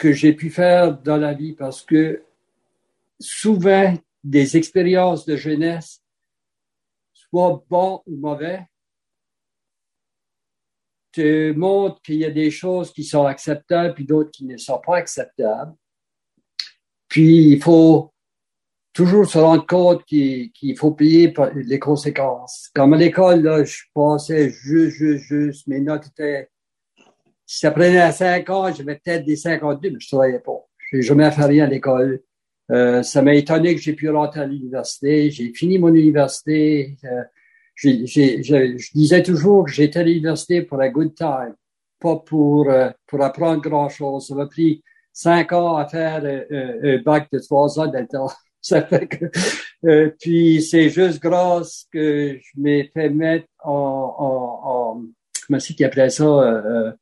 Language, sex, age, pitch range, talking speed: French, male, 60-79, 140-165 Hz, 160 wpm